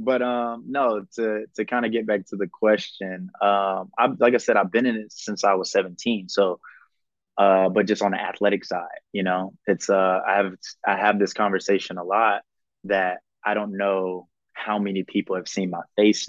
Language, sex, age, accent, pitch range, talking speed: English, male, 20-39, American, 95-110 Hz, 205 wpm